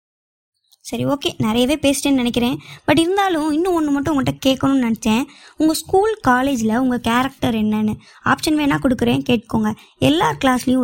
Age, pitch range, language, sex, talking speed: 20-39, 220-265 Hz, Tamil, male, 140 wpm